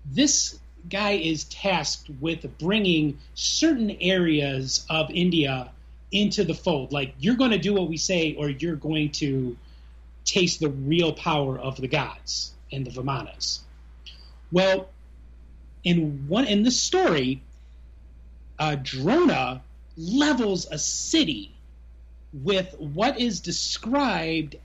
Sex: male